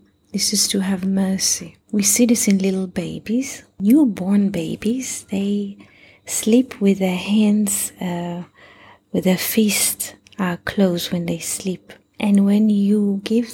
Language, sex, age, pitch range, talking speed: English, female, 30-49, 175-220 Hz, 135 wpm